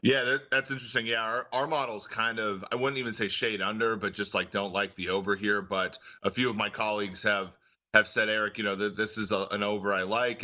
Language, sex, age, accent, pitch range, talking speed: English, male, 30-49, American, 100-115 Hz, 235 wpm